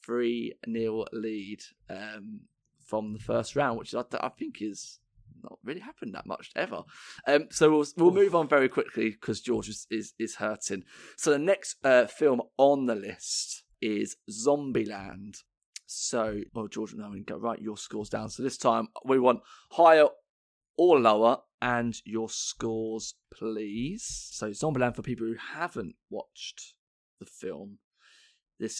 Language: English